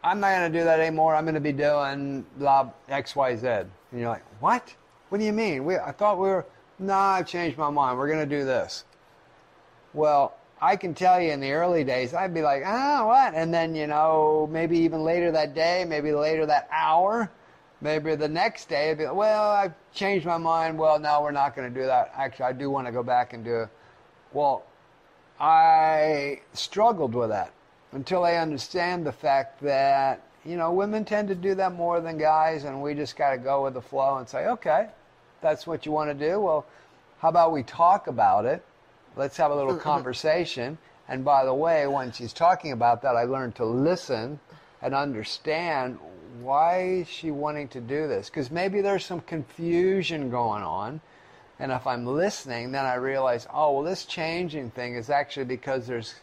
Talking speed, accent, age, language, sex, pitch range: 205 wpm, American, 50-69, English, male, 135-170 Hz